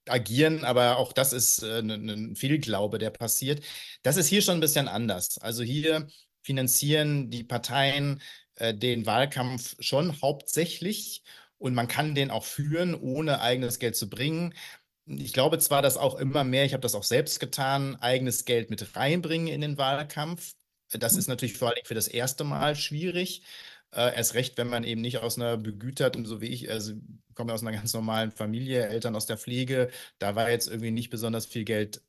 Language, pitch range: German, 115-140 Hz